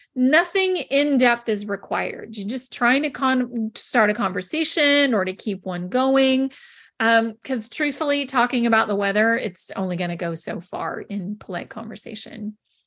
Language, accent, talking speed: English, American, 165 wpm